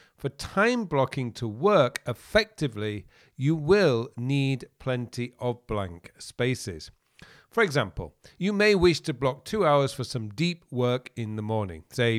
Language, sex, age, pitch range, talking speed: English, male, 50-69, 110-150 Hz, 150 wpm